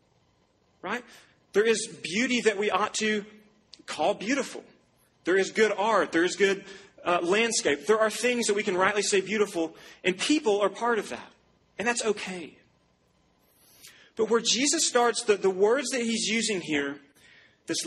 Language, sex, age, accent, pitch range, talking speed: English, male, 30-49, American, 160-215 Hz, 165 wpm